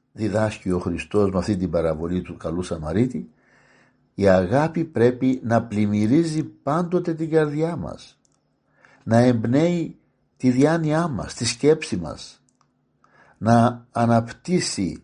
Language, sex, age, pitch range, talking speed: Greek, male, 60-79, 100-130 Hz, 115 wpm